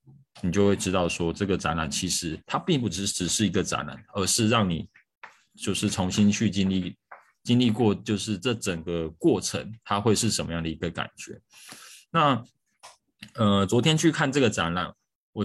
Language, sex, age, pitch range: Chinese, male, 20-39, 90-110 Hz